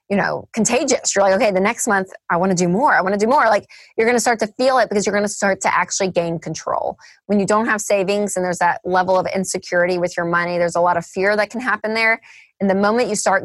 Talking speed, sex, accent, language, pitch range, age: 275 wpm, female, American, English, 185-220 Hz, 20-39